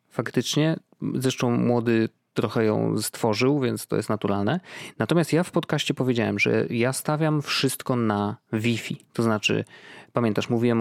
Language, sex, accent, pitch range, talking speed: Polish, male, native, 105-135 Hz, 140 wpm